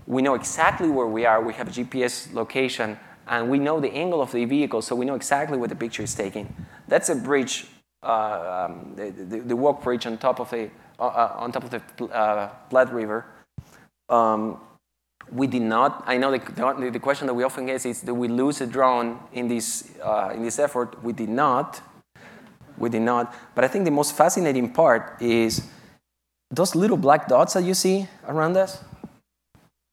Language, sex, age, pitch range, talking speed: English, male, 20-39, 110-135 Hz, 200 wpm